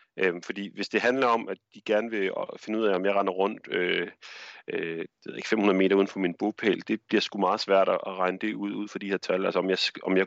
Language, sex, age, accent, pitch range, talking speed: Danish, male, 40-59, native, 90-110 Hz, 255 wpm